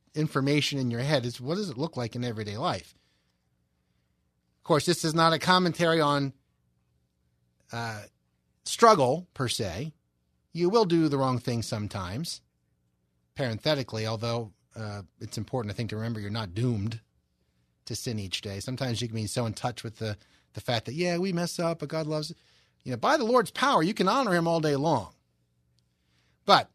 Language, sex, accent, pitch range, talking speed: English, male, American, 100-160 Hz, 185 wpm